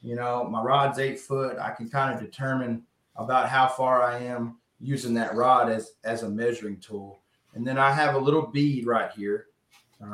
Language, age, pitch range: English, 30-49, 120-155 Hz